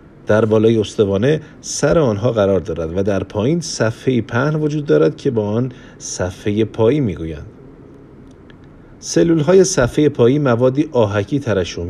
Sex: male